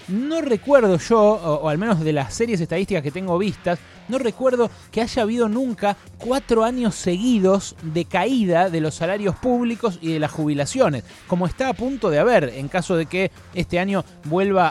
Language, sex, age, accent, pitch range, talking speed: Spanish, male, 20-39, Argentinian, 150-210 Hz, 185 wpm